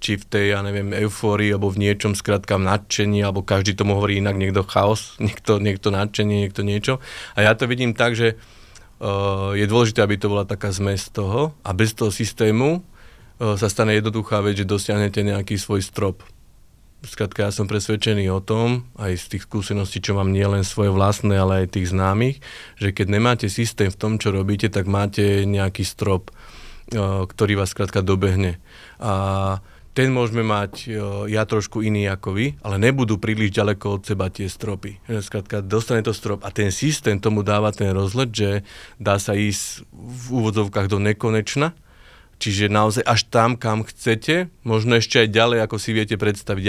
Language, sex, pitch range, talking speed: Slovak, male, 100-110 Hz, 170 wpm